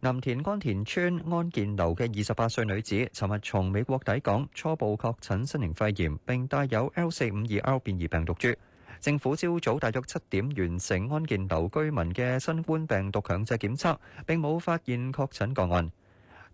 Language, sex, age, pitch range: Chinese, male, 20-39, 95-145 Hz